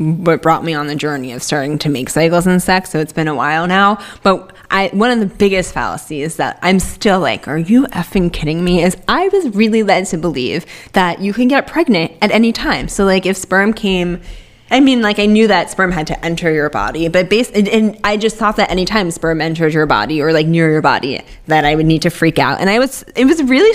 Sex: female